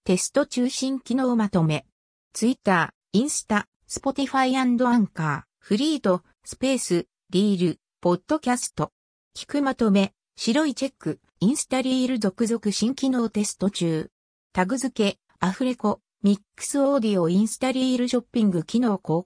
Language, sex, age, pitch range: Japanese, female, 60-79, 185-265 Hz